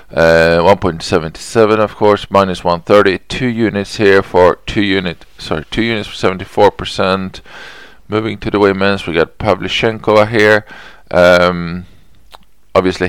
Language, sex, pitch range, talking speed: English, male, 85-105 Hz, 125 wpm